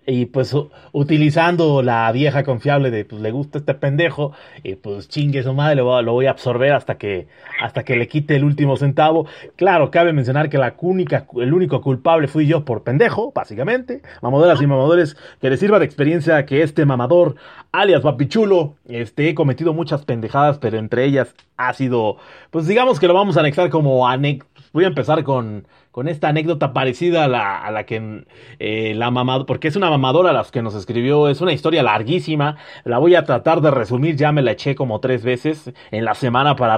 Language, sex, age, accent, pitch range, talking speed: Spanish, male, 30-49, Mexican, 125-160 Hz, 200 wpm